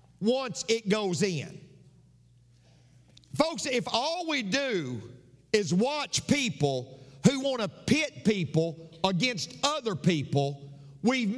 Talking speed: 110 wpm